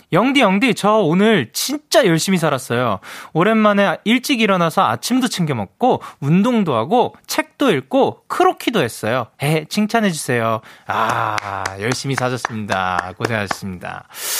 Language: Korean